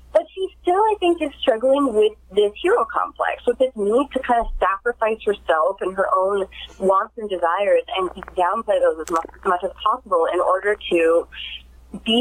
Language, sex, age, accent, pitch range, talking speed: English, female, 30-49, American, 200-285 Hz, 180 wpm